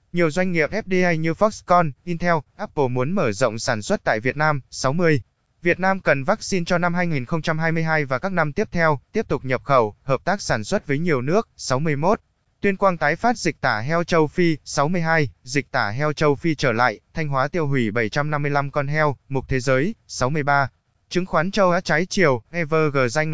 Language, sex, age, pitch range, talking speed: Vietnamese, male, 20-39, 130-170 Hz, 200 wpm